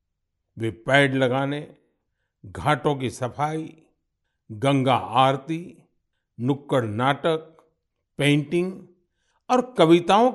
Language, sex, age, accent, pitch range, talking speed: Hindi, male, 50-69, native, 120-175 Hz, 75 wpm